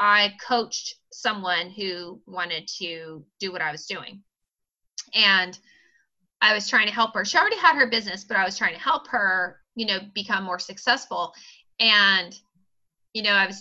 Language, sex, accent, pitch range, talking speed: English, female, American, 190-235 Hz, 175 wpm